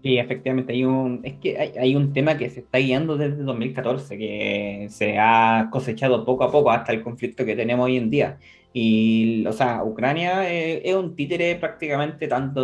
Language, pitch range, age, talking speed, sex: Spanish, 120-155 Hz, 20-39, 195 wpm, male